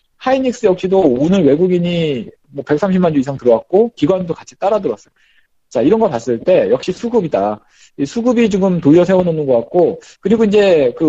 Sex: male